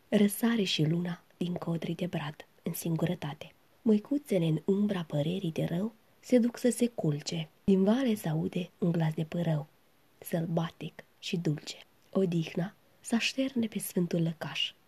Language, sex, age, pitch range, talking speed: Romanian, female, 20-39, 165-225 Hz, 150 wpm